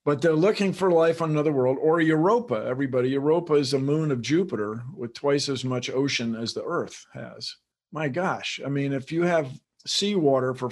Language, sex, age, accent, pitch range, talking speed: English, male, 50-69, American, 130-155 Hz, 195 wpm